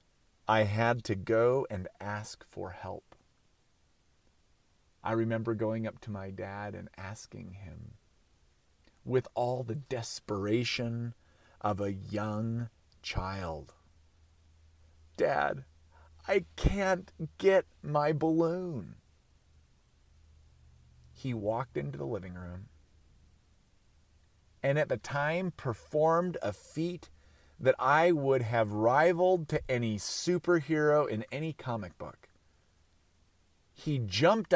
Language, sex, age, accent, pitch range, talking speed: English, male, 40-59, American, 85-135 Hz, 100 wpm